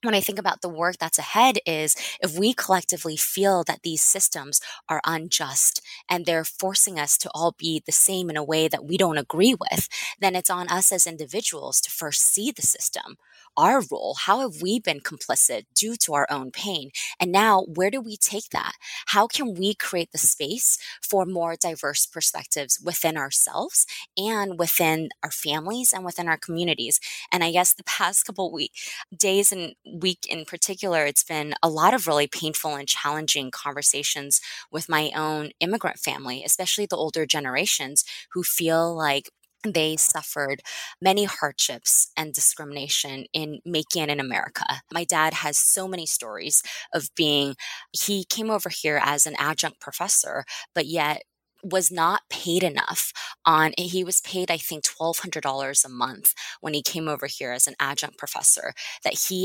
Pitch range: 150-190 Hz